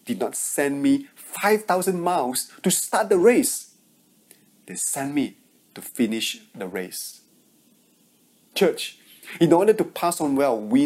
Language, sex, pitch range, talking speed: English, male, 170-255 Hz, 140 wpm